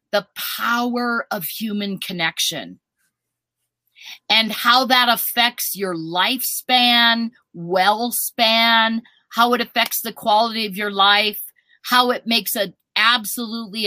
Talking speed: 115 wpm